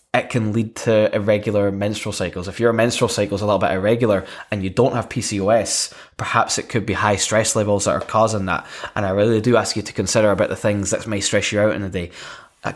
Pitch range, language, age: 100-120 Hz, English, 10-29